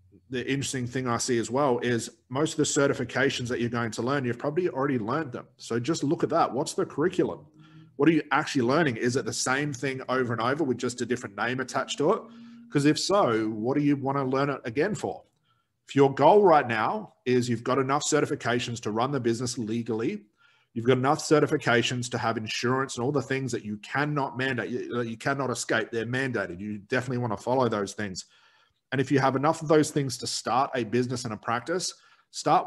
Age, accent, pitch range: 30-49, Australian, 120-150 Hz